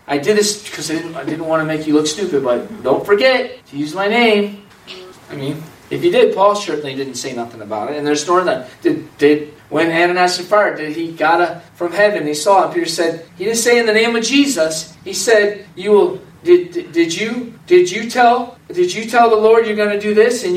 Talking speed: 250 wpm